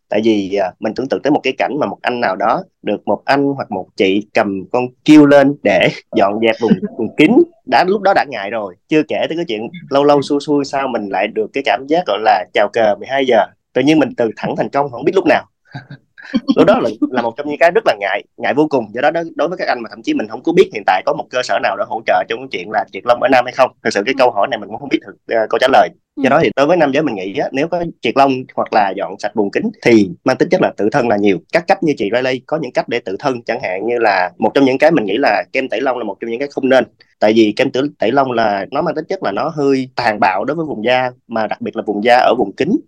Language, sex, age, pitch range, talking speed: Vietnamese, male, 20-39, 115-160 Hz, 305 wpm